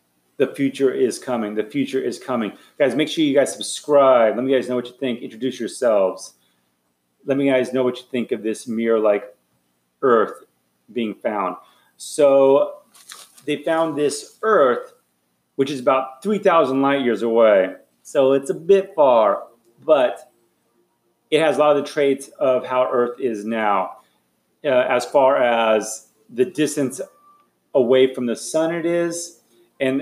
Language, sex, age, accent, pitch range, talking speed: English, male, 30-49, American, 115-150 Hz, 160 wpm